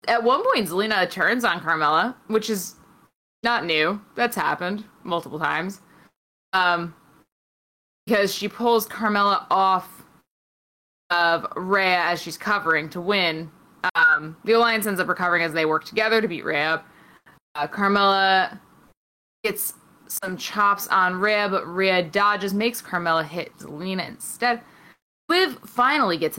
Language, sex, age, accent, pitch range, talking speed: English, female, 20-39, American, 170-215 Hz, 135 wpm